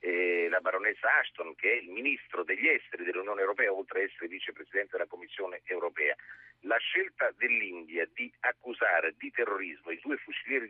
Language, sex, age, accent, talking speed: Italian, male, 50-69, native, 165 wpm